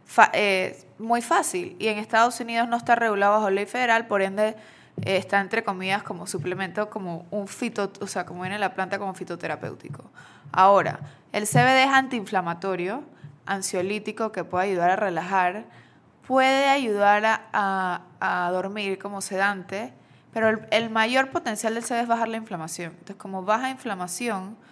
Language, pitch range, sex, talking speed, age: Spanish, 185-220 Hz, female, 165 wpm, 20-39